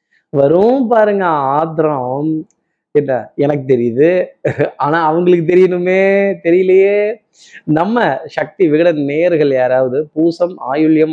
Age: 20-39